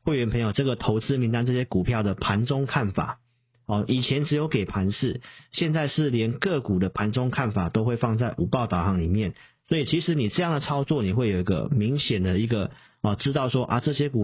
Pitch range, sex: 105-135 Hz, male